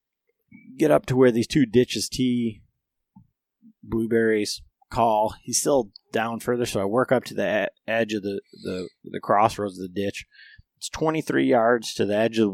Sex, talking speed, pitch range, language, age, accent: male, 180 wpm, 105-130 Hz, English, 30-49, American